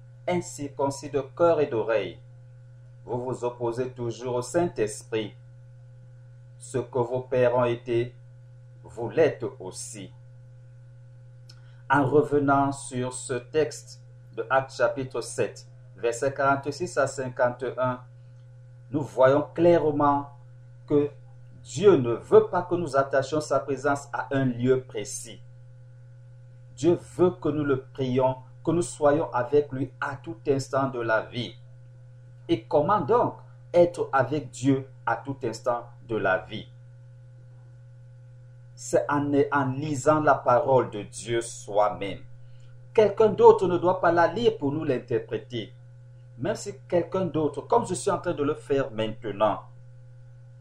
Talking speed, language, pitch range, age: 135 wpm, French, 120-145 Hz, 50-69